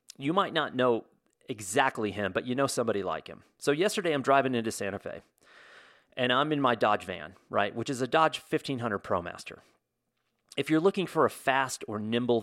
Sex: male